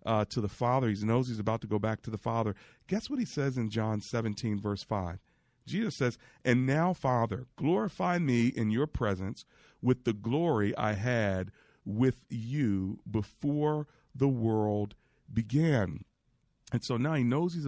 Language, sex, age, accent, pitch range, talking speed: English, male, 40-59, American, 105-135 Hz, 170 wpm